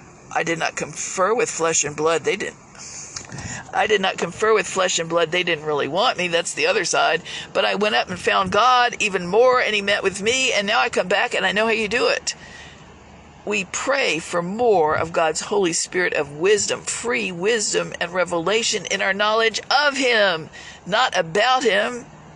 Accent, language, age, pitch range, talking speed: American, English, 50-69, 180-235 Hz, 200 wpm